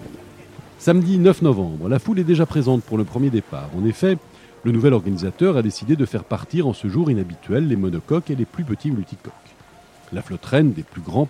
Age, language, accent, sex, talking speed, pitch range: 40-59, French, French, male, 205 wpm, 100-150 Hz